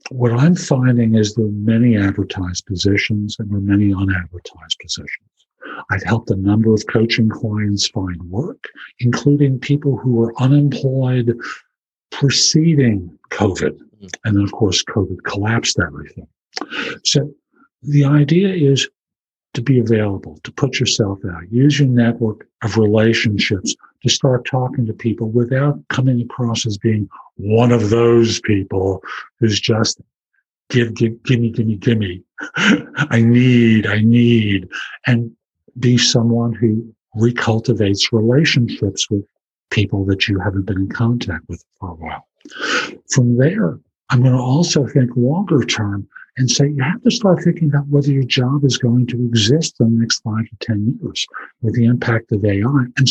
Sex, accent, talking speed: male, American, 155 wpm